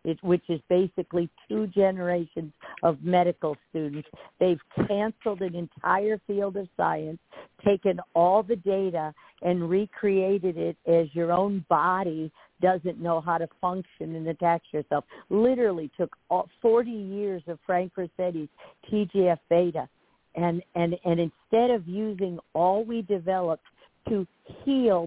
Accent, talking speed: American, 130 wpm